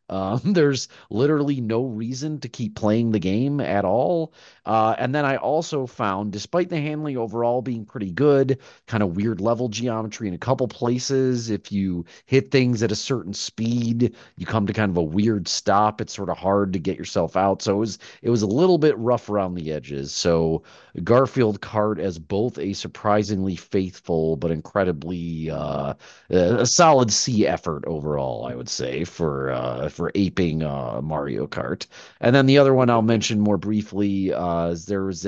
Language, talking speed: English, 185 wpm